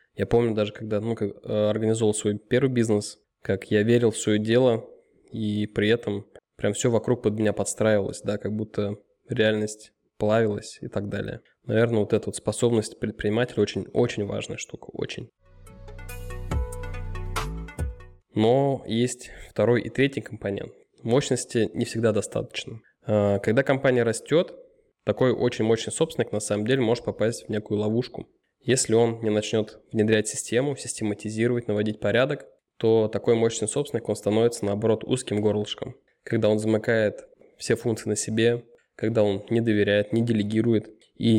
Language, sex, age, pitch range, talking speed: Russian, male, 20-39, 105-120 Hz, 145 wpm